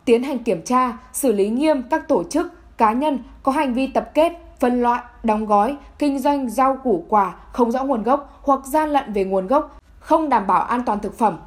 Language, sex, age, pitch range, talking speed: Vietnamese, female, 10-29, 230-285 Hz, 225 wpm